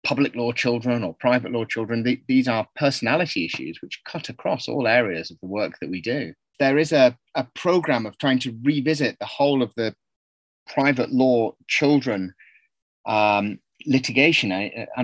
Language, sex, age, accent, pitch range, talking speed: English, male, 30-49, British, 115-140 Hz, 170 wpm